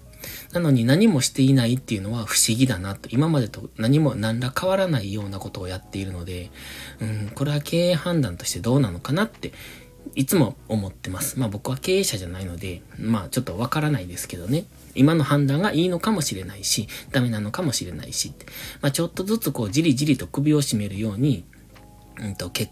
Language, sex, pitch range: Japanese, male, 95-135 Hz